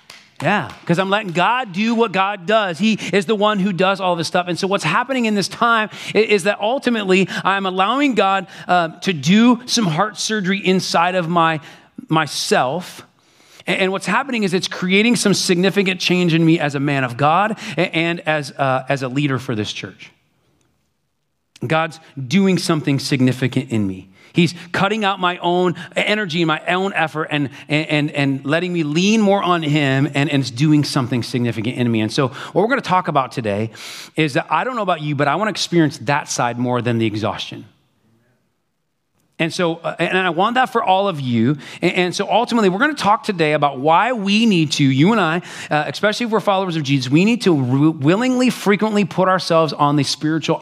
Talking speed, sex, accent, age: 200 wpm, male, American, 40-59